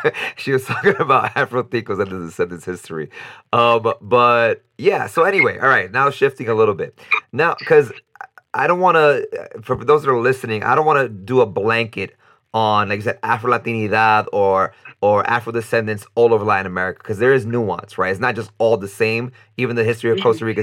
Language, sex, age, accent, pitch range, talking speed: English, male, 30-49, American, 110-155 Hz, 200 wpm